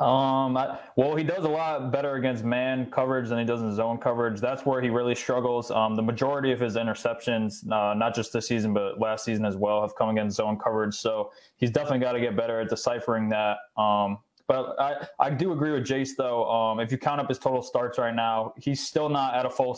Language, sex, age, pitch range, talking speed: English, male, 20-39, 115-130 Hz, 235 wpm